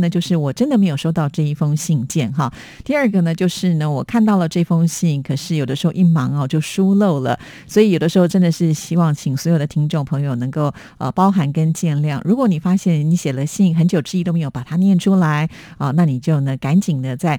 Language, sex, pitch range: Chinese, female, 150-190 Hz